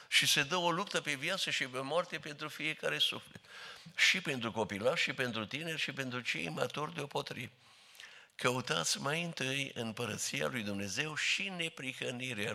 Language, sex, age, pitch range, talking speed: Romanian, male, 60-79, 120-150 Hz, 160 wpm